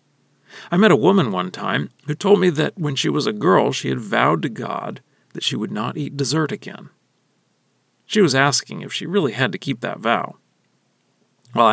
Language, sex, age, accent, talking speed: English, male, 40-59, American, 200 wpm